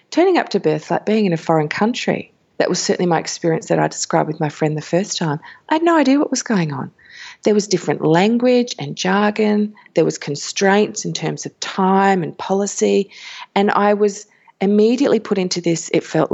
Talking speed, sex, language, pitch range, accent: 205 wpm, female, English, 170-225 Hz, Australian